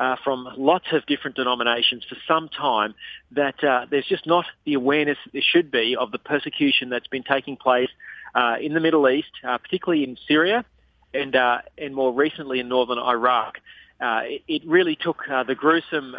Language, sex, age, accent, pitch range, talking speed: English, male, 30-49, Australian, 125-155 Hz, 195 wpm